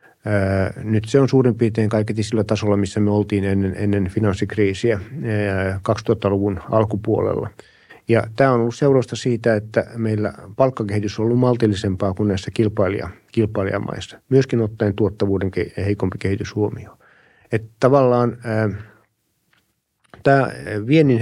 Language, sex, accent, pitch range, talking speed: Finnish, male, native, 105-120 Hz, 120 wpm